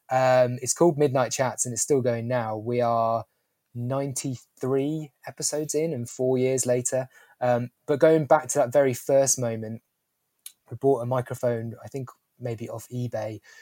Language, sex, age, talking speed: English, male, 20-39, 165 wpm